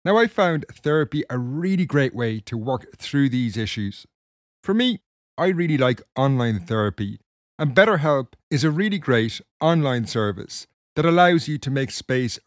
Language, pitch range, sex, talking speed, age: English, 110-155 Hz, male, 165 wpm, 30-49